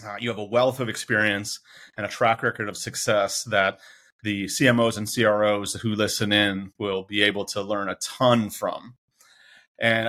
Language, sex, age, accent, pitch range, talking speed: English, male, 30-49, American, 105-125 Hz, 180 wpm